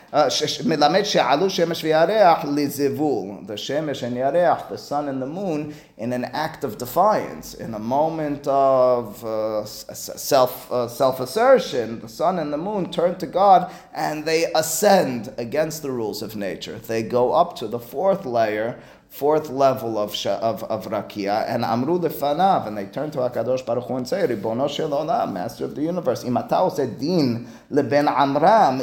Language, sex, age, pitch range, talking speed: English, male, 30-49, 120-160 Hz, 140 wpm